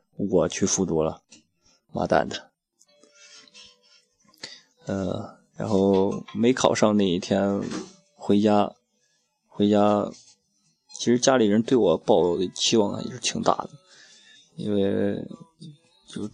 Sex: male